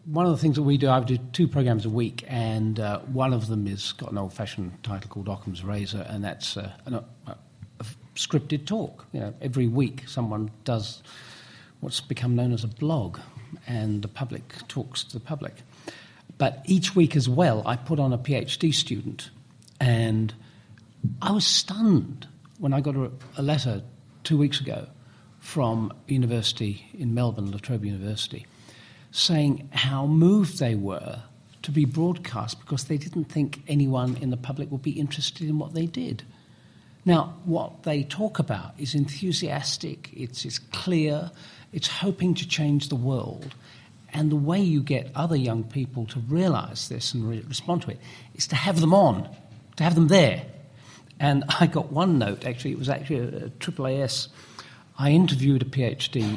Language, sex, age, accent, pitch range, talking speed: English, male, 50-69, British, 120-150 Hz, 170 wpm